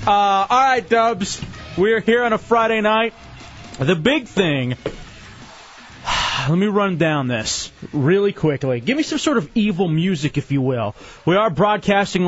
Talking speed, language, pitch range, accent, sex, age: 155 wpm, English, 150-205 Hz, American, male, 30-49